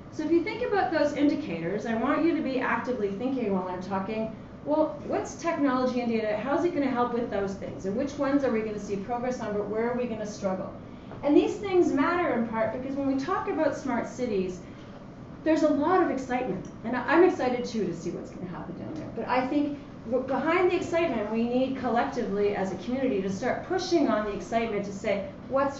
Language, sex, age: English, female, 30-49